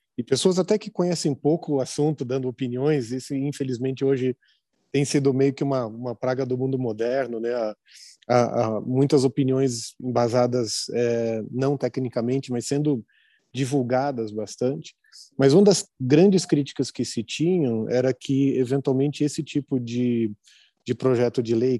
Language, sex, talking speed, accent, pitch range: Portuguese, male, 150 wpm, Brazilian, 120-145 Hz